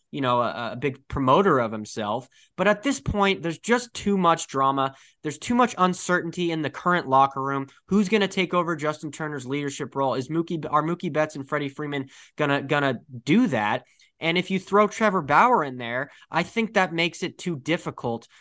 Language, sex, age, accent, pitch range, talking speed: English, male, 20-39, American, 130-170 Hz, 200 wpm